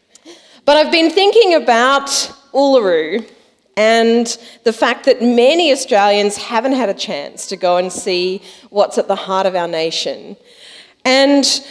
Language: English